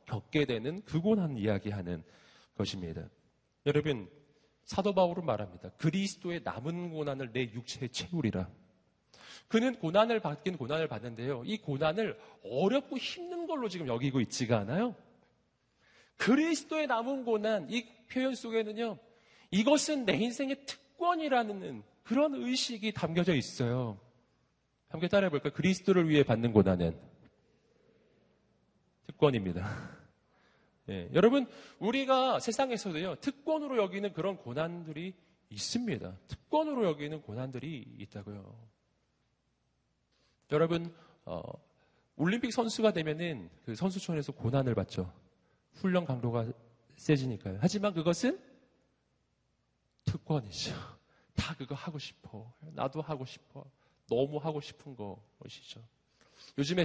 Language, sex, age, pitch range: Korean, male, 40-59, 130-215 Hz